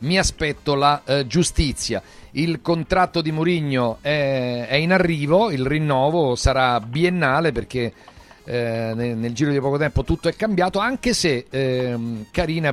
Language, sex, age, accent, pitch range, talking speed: Italian, male, 50-69, native, 130-170 Hz, 145 wpm